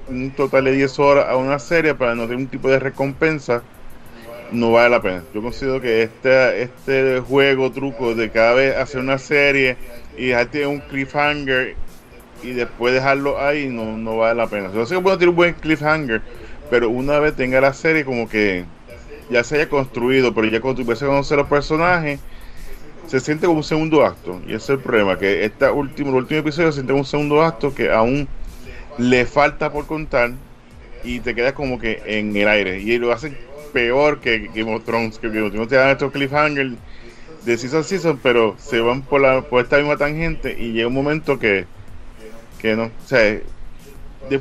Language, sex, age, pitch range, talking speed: English, male, 10-29, 115-145 Hz, 195 wpm